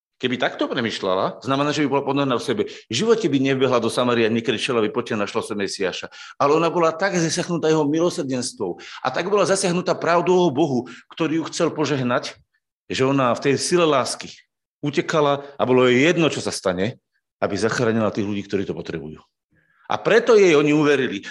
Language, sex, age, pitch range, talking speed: Slovak, male, 40-59, 135-180 Hz, 185 wpm